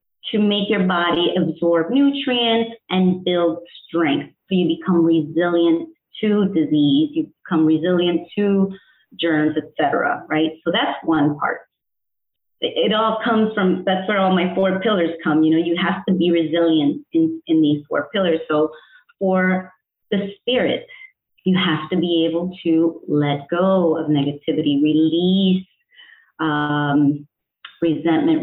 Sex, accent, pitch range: female, American, 160-205 Hz